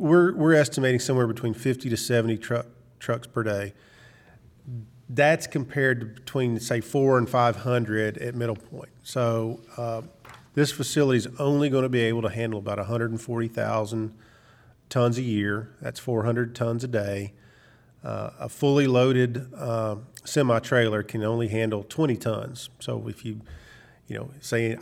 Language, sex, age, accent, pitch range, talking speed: English, male, 40-59, American, 115-130 Hz, 150 wpm